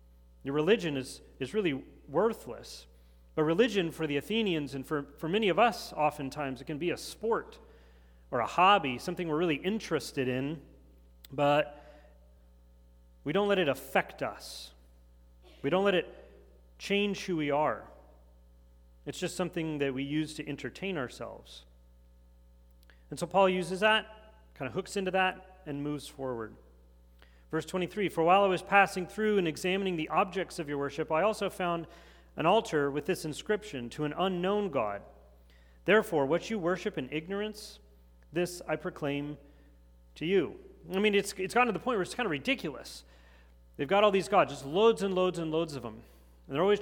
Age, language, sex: 40-59, English, male